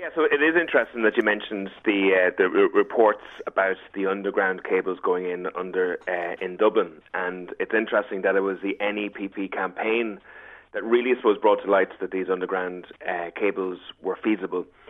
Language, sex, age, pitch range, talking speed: English, male, 30-49, 95-130 Hz, 180 wpm